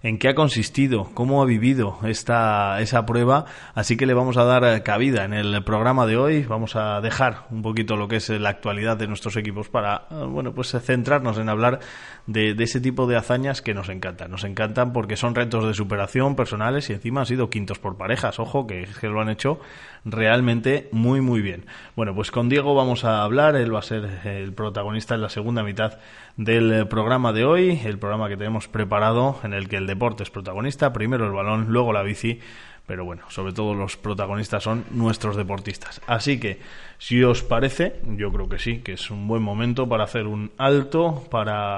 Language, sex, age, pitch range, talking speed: Spanish, male, 20-39, 105-125 Hz, 205 wpm